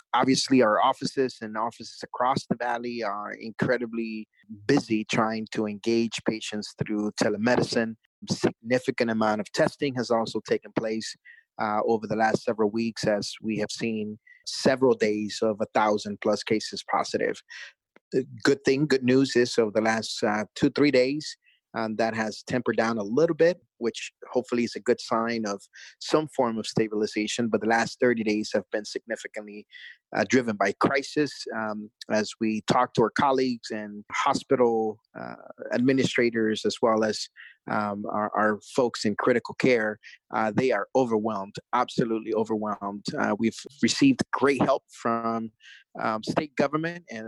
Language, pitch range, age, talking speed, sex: English, 110-125 Hz, 30-49, 155 wpm, male